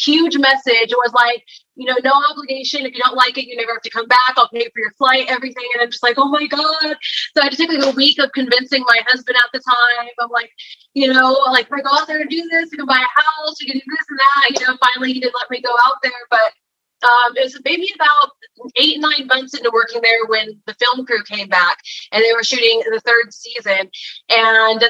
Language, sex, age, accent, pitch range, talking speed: English, female, 20-39, American, 230-270 Hz, 260 wpm